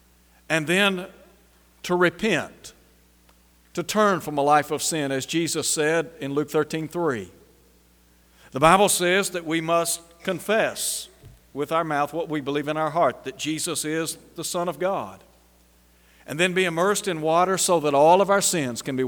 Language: English